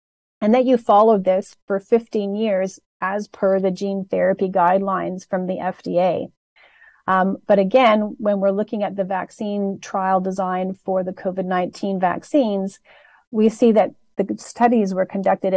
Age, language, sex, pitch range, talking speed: 40-59, English, female, 185-205 Hz, 150 wpm